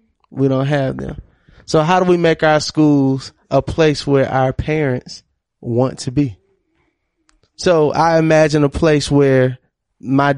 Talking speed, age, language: 150 wpm, 20-39, English